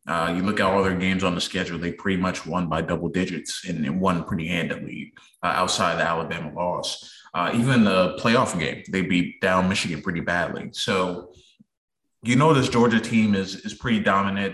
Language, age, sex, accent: English, 20-39, male, American